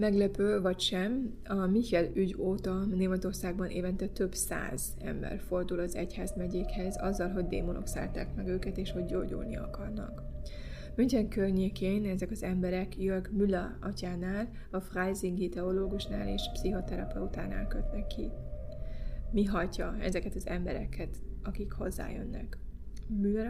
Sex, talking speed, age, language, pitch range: female, 130 wpm, 20-39, Hungarian, 180-200 Hz